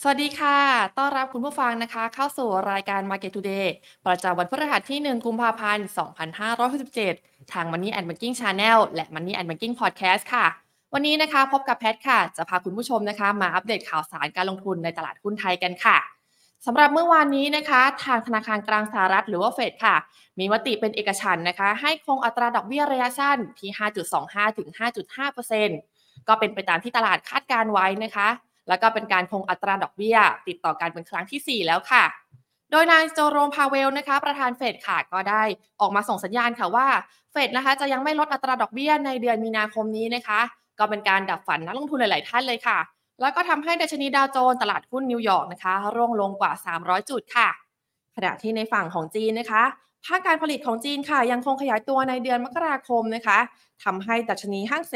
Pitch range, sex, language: 195-265 Hz, female, Thai